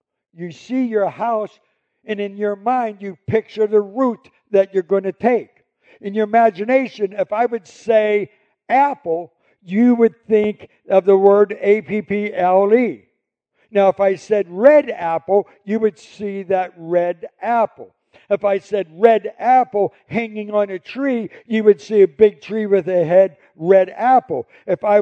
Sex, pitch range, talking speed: male, 185-225 Hz, 160 wpm